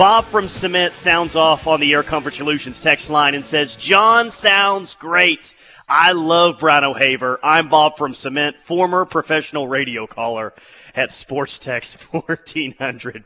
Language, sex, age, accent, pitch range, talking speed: English, male, 30-49, American, 135-170 Hz, 150 wpm